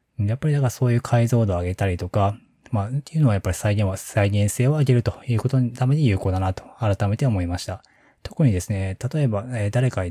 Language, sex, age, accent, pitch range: Japanese, male, 20-39, native, 95-120 Hz